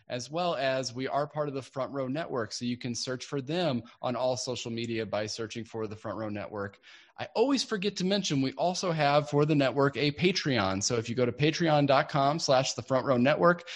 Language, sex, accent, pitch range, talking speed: English, male, American, 115-155 Hz, 225 wpm